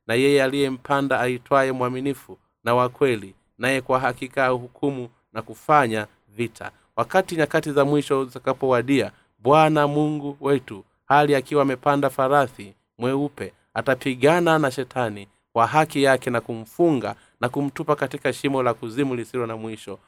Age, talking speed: 30-49, 130 wpm